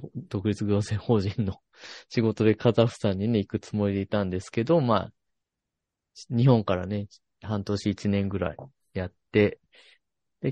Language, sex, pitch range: Japanese, male, 100-130 Hz